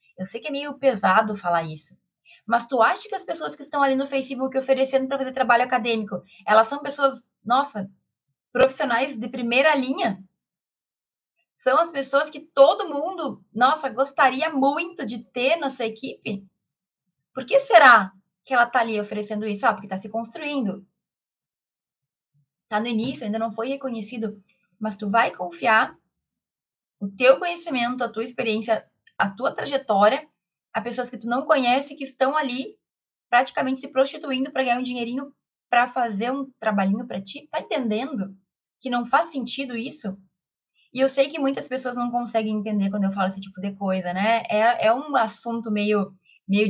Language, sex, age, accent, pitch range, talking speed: Portuguese, female, 20-39, Brazilian, 205-270 Hz, 170 wpm